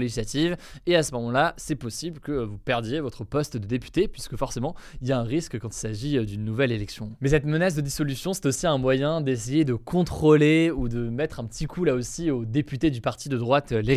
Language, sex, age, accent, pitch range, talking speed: French, male, 20-39, French, 120-155 Hz, 230 wpm